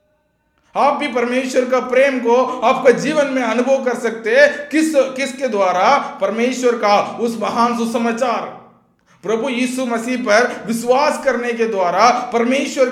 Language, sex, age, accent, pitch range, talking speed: Hindi, male, 50-69, native, 155-245 Hz, 135 wpm